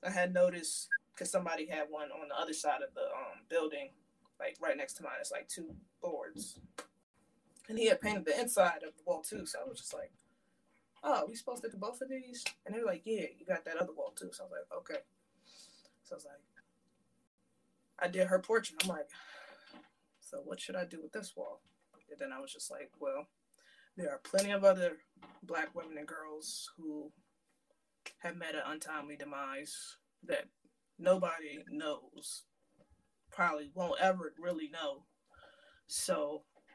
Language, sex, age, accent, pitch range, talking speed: English, female, 20-39, American, 170-270 Hz, 185 wpm